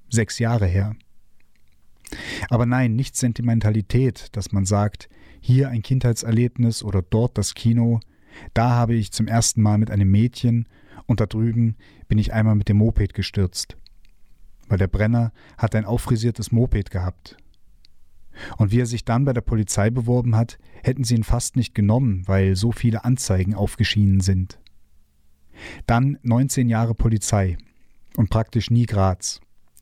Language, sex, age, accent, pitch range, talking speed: German, male, 40-59, German, 100-120 Hz, 150 wpm